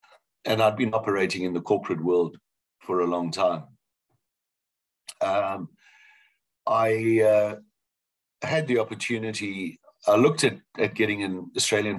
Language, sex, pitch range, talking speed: English, male, 85-110 Hz, 130 wpm